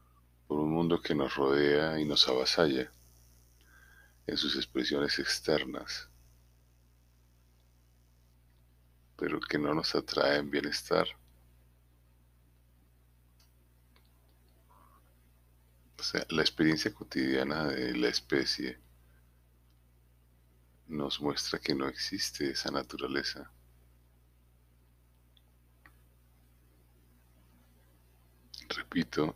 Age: 50-69